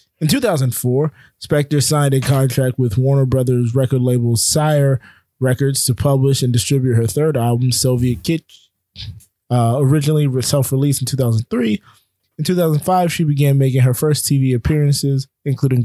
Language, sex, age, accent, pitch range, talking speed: English, male, 20-39, American, 120-150 Hz, 140 wpm